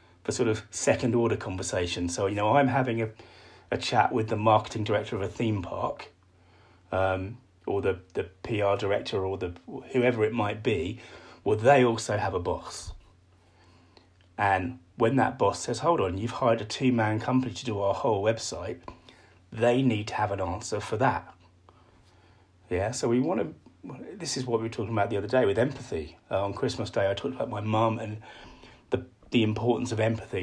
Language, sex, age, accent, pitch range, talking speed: English, male, 30-49, British, 95-120 Hz, 190 wpm